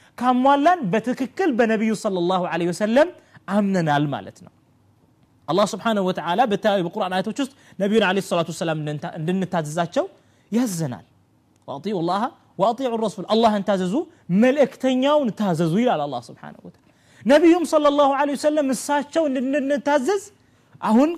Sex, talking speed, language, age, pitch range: male, 115 wpm, Amharic, 30-49, 160-255 Hz